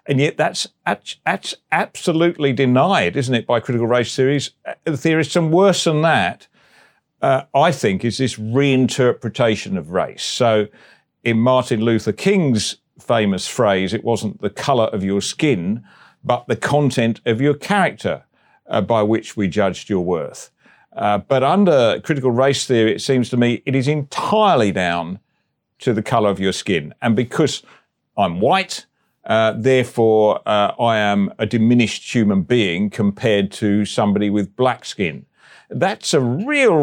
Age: 50-69